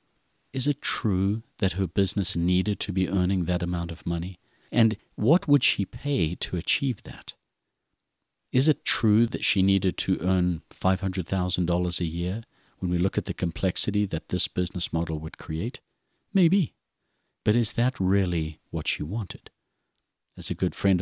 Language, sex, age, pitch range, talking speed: English, male, 50-69, 85-110 Hz, 165 wpm